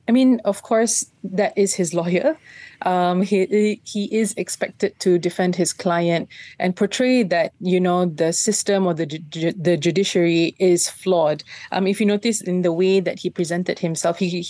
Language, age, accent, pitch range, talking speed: English, 20-39, Malaysian, 165-190 Hz, 175 wpm